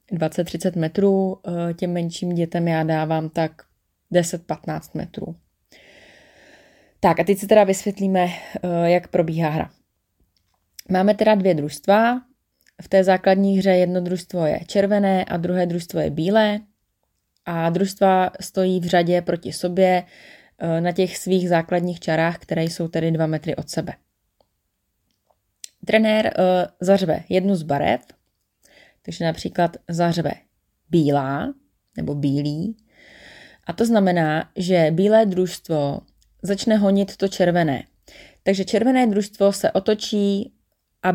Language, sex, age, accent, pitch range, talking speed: Czech, female, 20-39, native, 170-195 Hz, 120 wpm